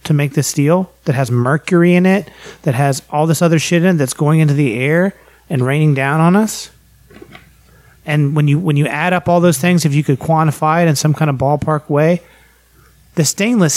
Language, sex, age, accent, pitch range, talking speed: English, male, 30-49, American, 135-175 Hz, 220 wpm